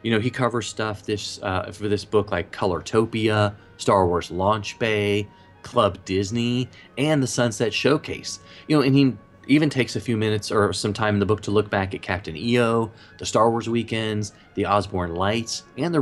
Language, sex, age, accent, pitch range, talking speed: English, male, 30-49, American, 95-125 Hz, 195 wpm